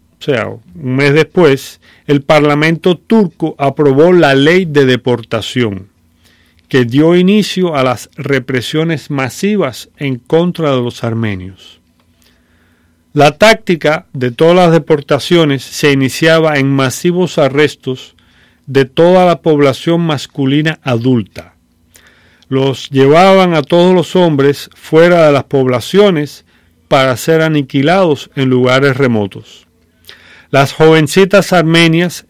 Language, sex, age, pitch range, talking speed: English, male, 40-59, 125-160 Hz, 115 wpm